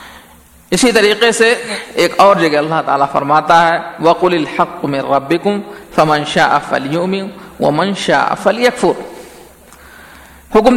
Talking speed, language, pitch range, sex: 115 wpm, Urdu, 155-205 Hz, male